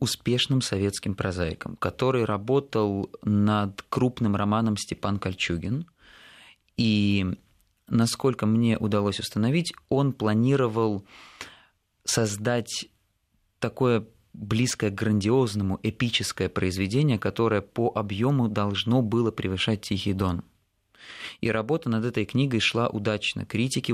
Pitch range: 95-115 Hz